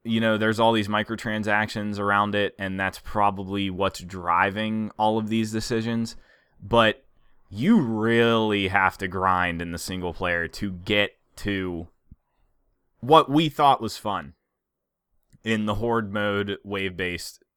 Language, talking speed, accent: English, 135 wpm, American